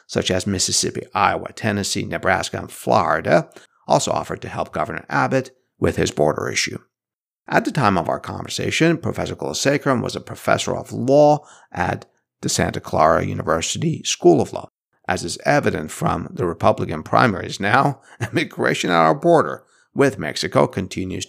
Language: English